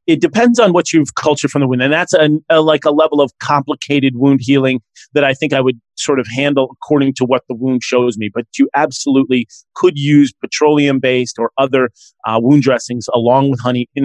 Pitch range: 125-155 Hz